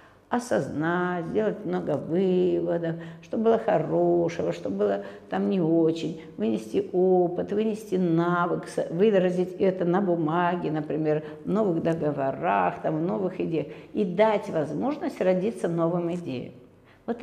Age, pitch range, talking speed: 50-69, 150-210 Hz, 120 wpm